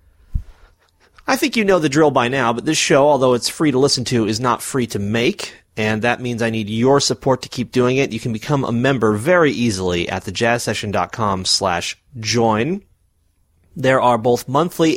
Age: 30-49